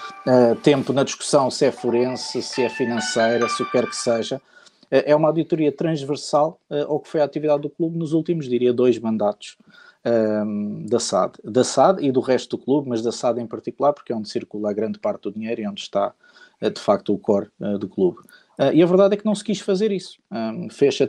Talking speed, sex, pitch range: 210 wpm, male, 120-170 Hz